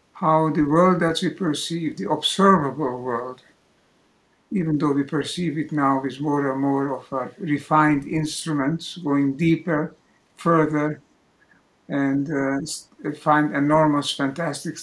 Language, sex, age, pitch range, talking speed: English, male, 60-79, 135-155 Hz, 125 wpm